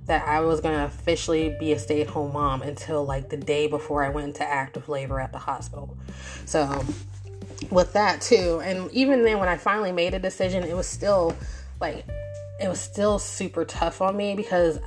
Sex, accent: female, American